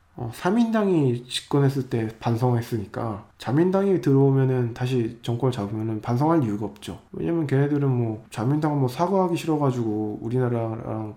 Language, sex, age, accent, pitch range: Korean, male, 20-39, native, 110-140 Hz